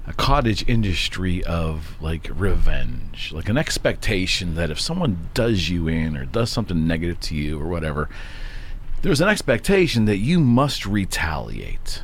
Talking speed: 150 wpm